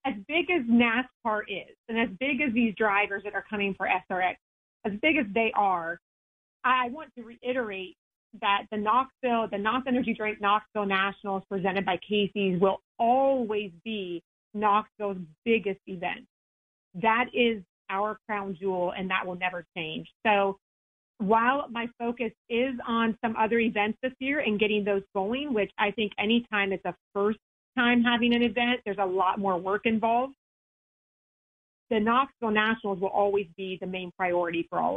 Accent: American